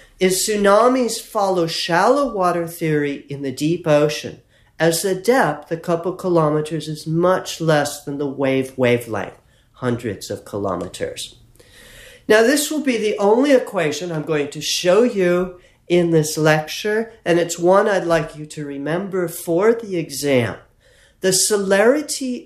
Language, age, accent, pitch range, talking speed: English, 50-69, American, 150-200 Hz, 145 wpm